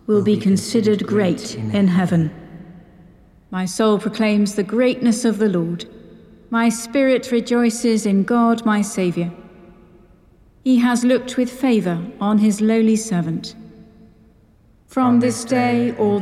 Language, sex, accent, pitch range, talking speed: English, female, British, 190-230 Hz, 125 wpm